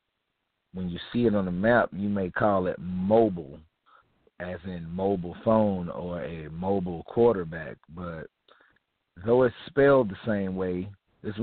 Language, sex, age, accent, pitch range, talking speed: English, male, 50-69, American, 85-105 Hz, 145 wpm